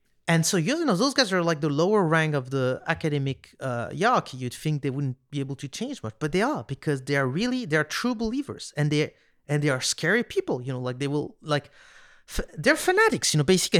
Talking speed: 240 wpm